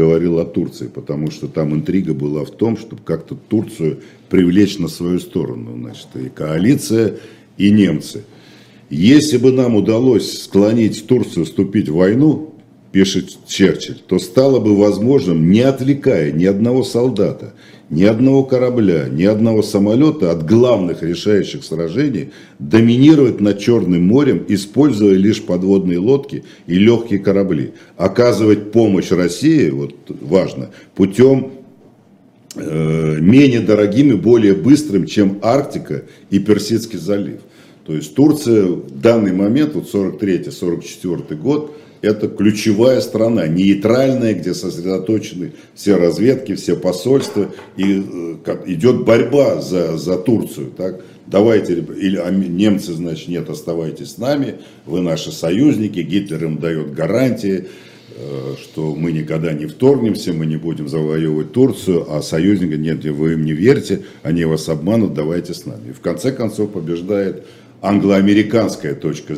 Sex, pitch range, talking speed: male, 85-110 Hz, 125 wpm